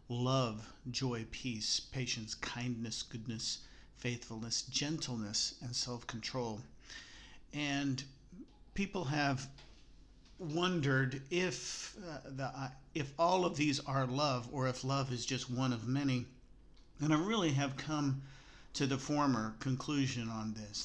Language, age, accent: English, 50-69, American